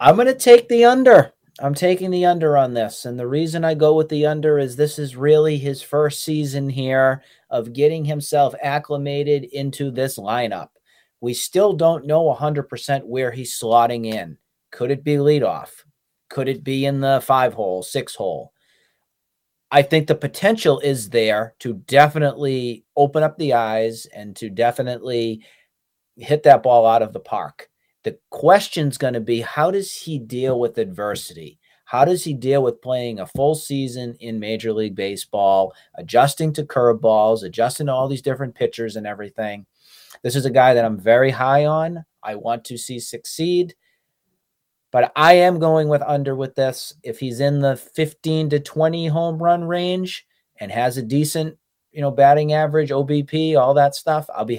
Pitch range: 120-155 Hz